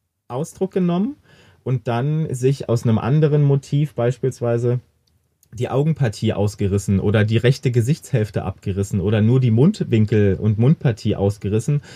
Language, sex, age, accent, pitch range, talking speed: German, male, 30-49, German, 110-135 Hz, 125 wpm